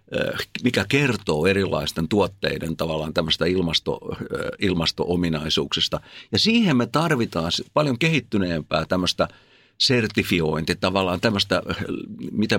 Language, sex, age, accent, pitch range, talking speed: Finnish, male, 60-79, native, 85-110 Hz, 90 wpm